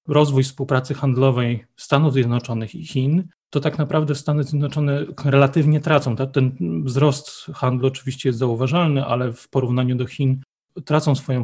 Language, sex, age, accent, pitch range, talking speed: Polish, male, 30-49, native, 130-150 Hz, 140 wpm